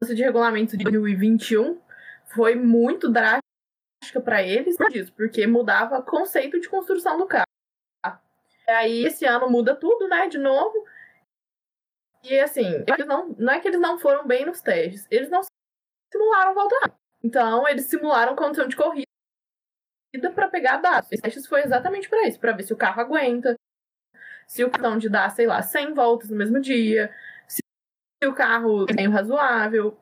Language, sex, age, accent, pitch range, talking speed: Portuguese, female, 20-39, Brazilian, 220-300 Hz, 170 wpm